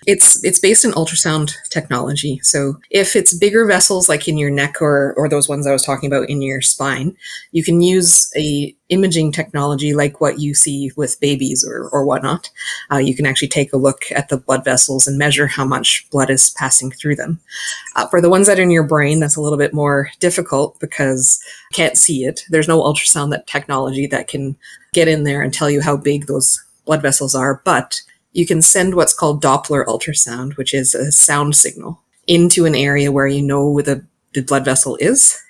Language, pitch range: English, 140-165 Hz